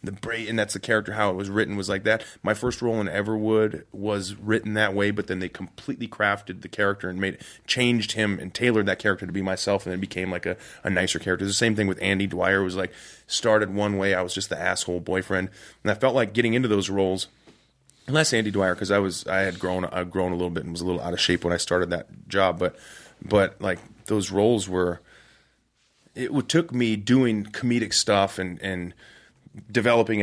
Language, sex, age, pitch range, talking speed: English, male, 30-49, 90-110 Hz, 230 wpm